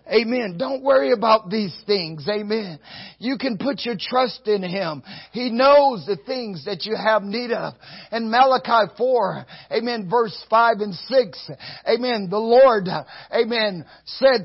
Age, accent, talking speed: 50-69, American, 150 wpm